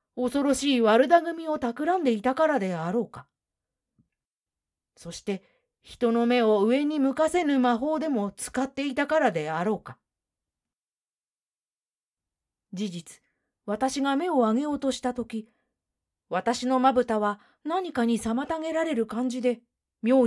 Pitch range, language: 200-275 Hz, Japanese